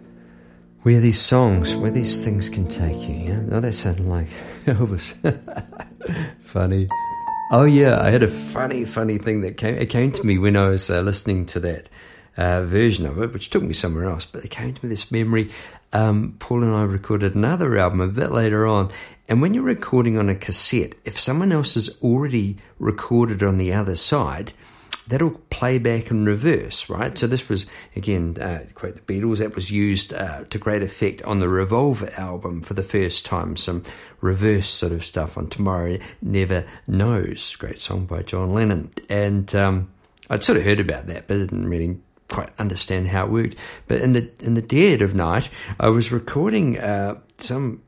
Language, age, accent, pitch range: English, 50-69, British, 95-115 Hz